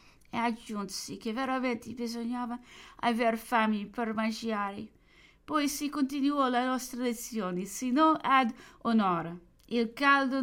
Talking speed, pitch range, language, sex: 115 wpm, 225-280 Hz, English, female